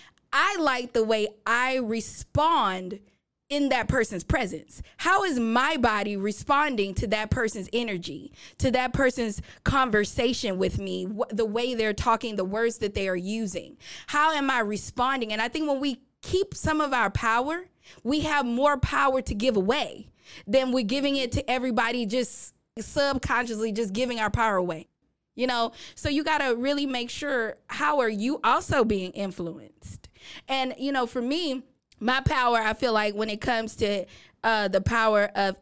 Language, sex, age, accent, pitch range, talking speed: English, female, 20-39, American, 210-265 Hz, 170 wpm